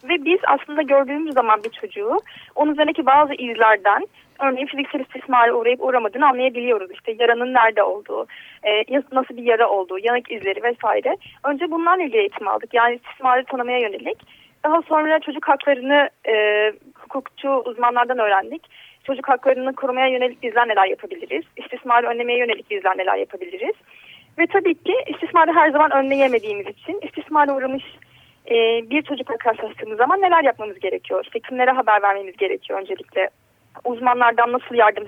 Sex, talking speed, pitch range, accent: female, 145 wpm, 240-340 Hz, native